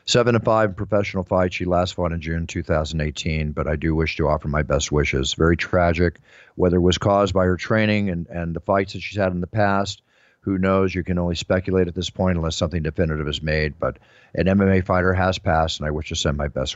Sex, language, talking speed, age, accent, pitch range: male, English, 235 wpm, 50-69, American, 80-100 Hz